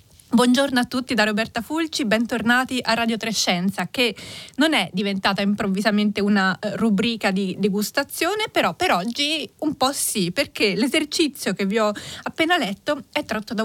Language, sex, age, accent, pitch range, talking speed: Italian, female, 30-49, native, 200-255 Hz, 155 wpm